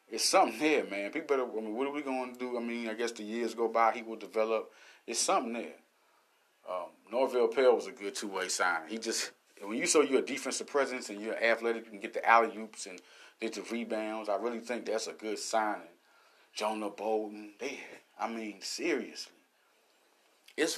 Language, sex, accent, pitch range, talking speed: English, male, American, 115-165 Hz, 210 wpm